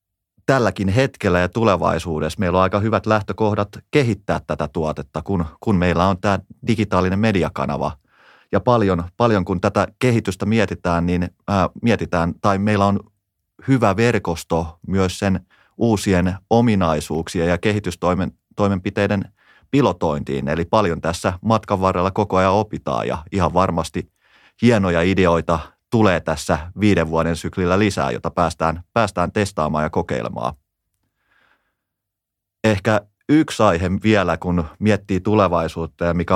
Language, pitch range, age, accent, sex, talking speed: Finnish, 85-105 Hz, 30-49, native, male, 125 wpm